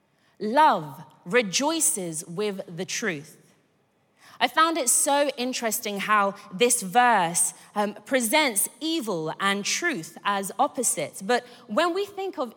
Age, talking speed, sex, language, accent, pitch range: 20-39, 120 wpm, female, English, British, 200-285 Hz